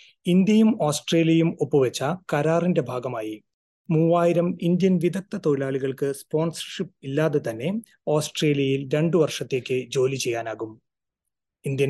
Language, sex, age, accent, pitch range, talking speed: Malayalam, male, 30-49, native, 135-170 Hz, 90 wpm